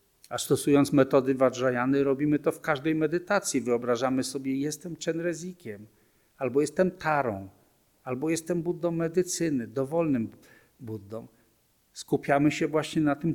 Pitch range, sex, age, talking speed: 120-155 Hz, male, 50-69, 120 wpm